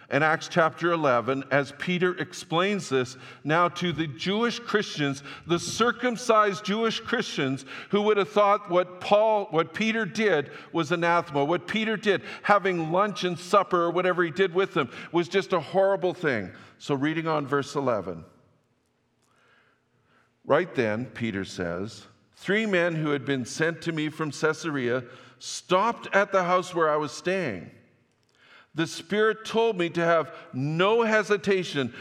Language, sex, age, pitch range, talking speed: English, male, 50-69, 140-195 Hz, 150 wpm